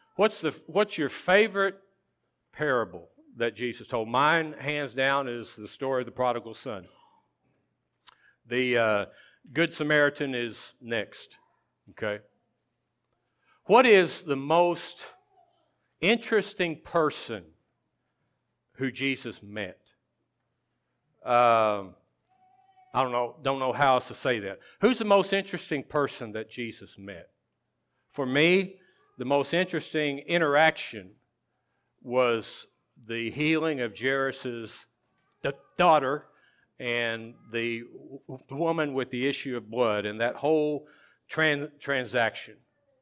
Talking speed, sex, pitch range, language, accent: 110 wpm, male, 120-170 Hz, English, American